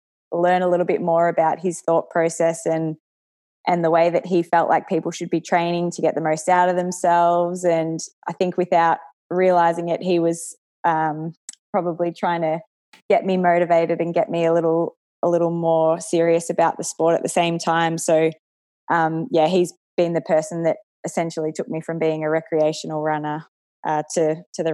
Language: English